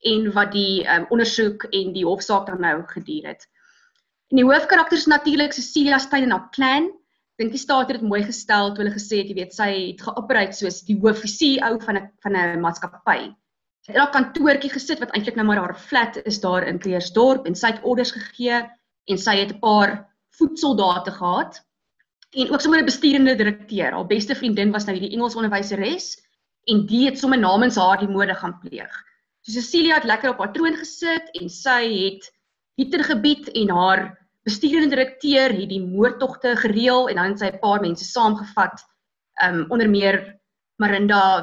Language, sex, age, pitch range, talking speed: English, female, 20-39, 195-250 Hz, 185 wpm